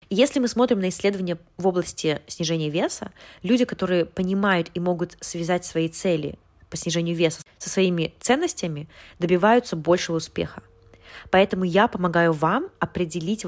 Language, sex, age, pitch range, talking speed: Russian, female, 20-39, 160-200 Hz, 140 wpm